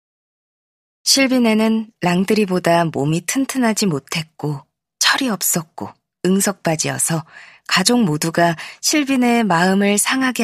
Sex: female